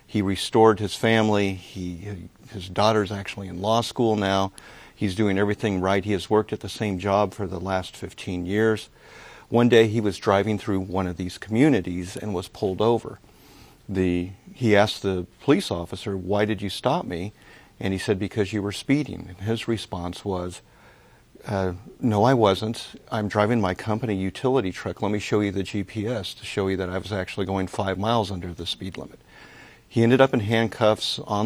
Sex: male